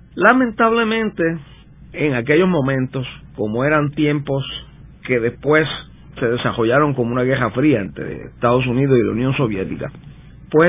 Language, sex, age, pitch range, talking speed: Spanish, male, 50-69, 125-165 Hz, 130 wpm